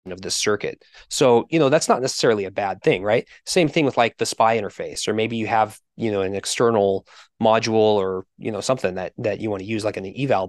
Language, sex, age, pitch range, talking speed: English, male, 20-39, 105-125 Hz, 240 wpm